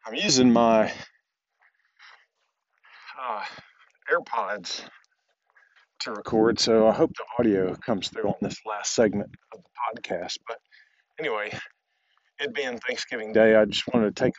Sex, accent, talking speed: male, American, 135 wpm